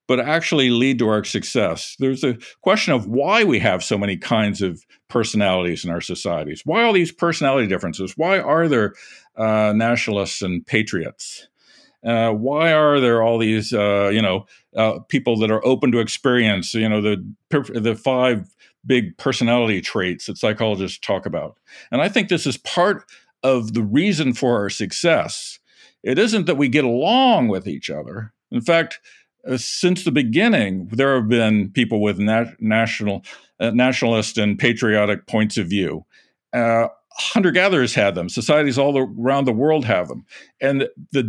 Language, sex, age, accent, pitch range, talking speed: English, male, 50-69, American, 105-130 Hz, 170 wpm